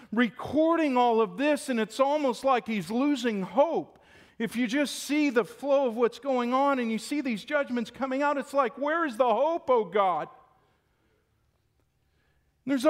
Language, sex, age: English, male, 50-69